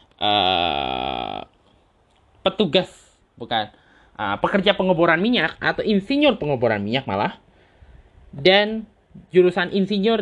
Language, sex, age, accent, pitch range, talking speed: Indonesian, male, 20-39, native, 135-200 Hz, 90 wpm